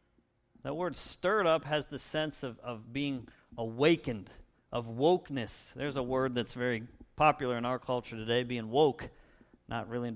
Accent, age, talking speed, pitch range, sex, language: American, 40-59, 165 wpm, 120-155 Hz, male, English